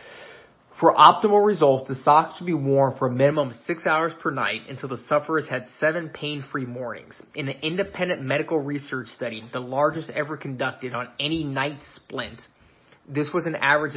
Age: 20-39